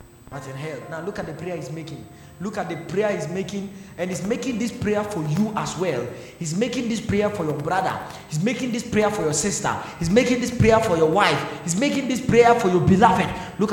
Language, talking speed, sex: English, 225 wpm, male